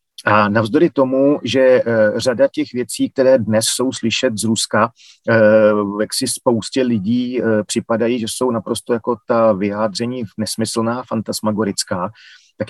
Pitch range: 110-130 Hz